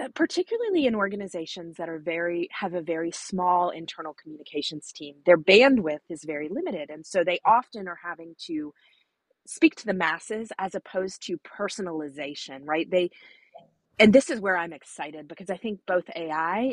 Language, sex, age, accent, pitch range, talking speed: English, female, 30-49, American, 165-215 Hz, 165 wpm